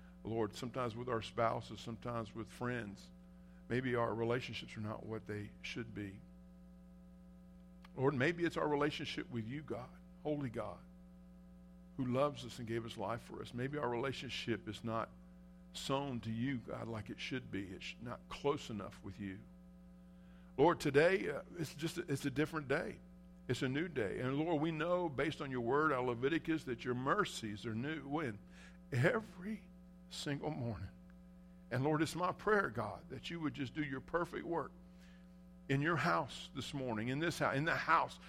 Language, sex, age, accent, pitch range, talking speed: English, male, 50-69, American, 105-165 Hz, 175 wpm